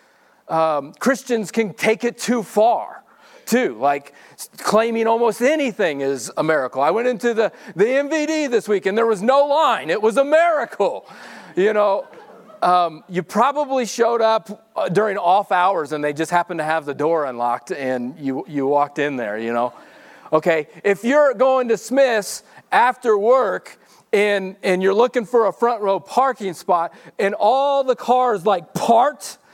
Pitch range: 155-230 Hz